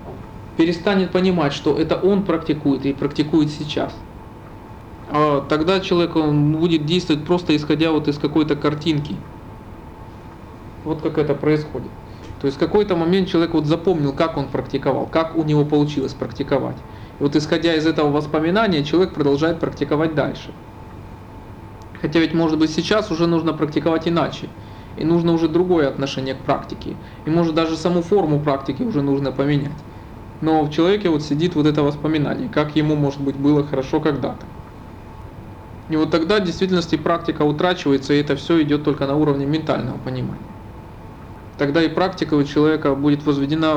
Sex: male